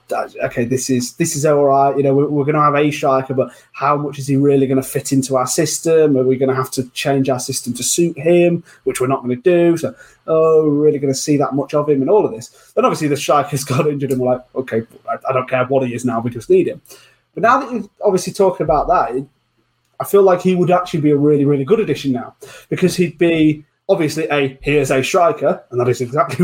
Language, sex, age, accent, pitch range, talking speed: English, male, 20-39, British, 130-165 Hz, 265 wpm